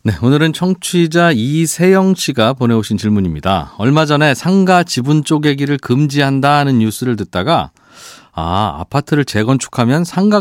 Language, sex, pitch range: Korean, male, 110-160 Hz